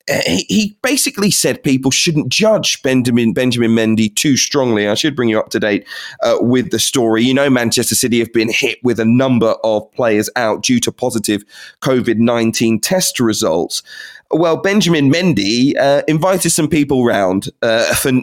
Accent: British